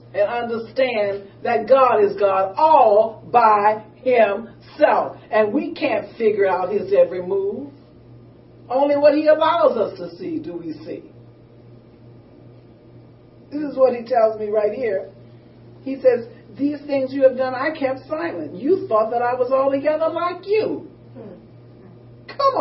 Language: English